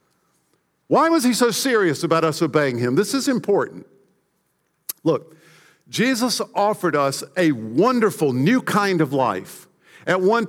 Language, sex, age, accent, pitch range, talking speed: English, male, 50-69, American, 165-220 Hz, 135 wpm